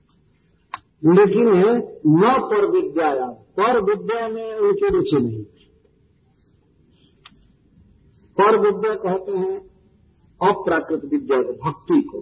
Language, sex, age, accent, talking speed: Hindi, male, 50-69, native, 95 wpm